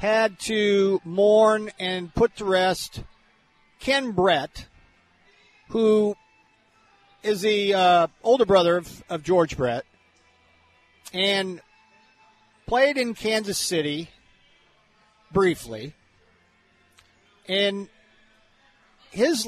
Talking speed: 85 wpm